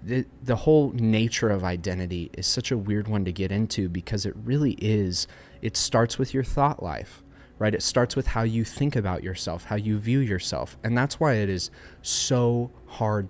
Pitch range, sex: 95-120 Hz, male